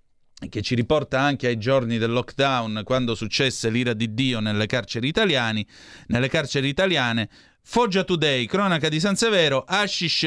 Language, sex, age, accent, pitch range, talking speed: Italian, male, 30-49, native, 120-155 Hz, 150 wpm